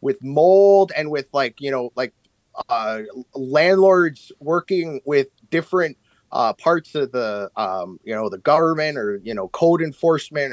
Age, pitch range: 30-49, 125-160 Hz